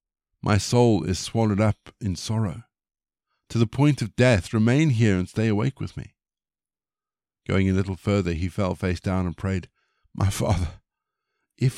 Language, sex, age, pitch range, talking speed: English, male, 50-69, 95-125 Hz, 165 wpm